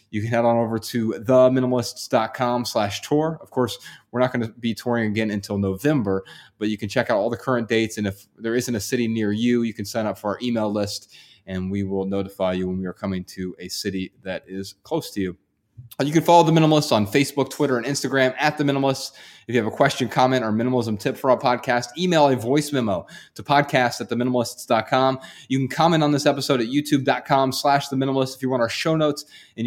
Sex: male